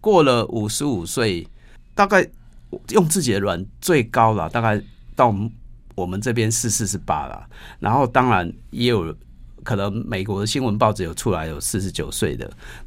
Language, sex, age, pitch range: Chinese, male, 50-69, 90-115 Hz